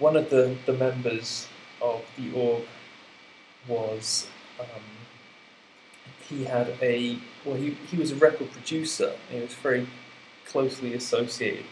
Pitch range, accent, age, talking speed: 120-135 Hz, British, 20-39, 130 wpm